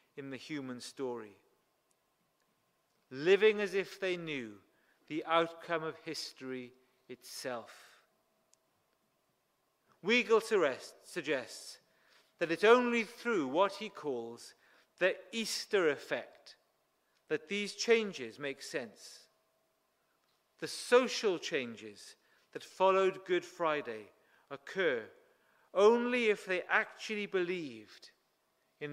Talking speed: 95 wpm